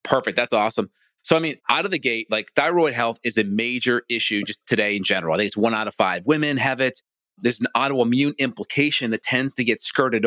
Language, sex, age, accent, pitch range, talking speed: English, male, 30-49, American, 115-145 Hz, 235 wpm